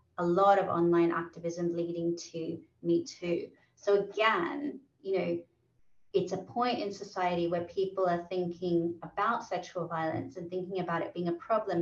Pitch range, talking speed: 170-190 Hz, 160 wpm